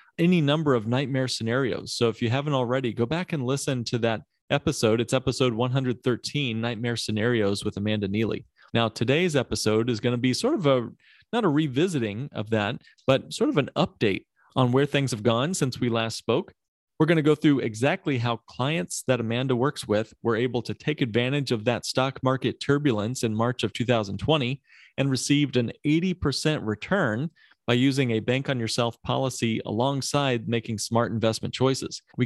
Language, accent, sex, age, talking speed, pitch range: English, American, male, 30-49, 180 wpm, 115-140 Hz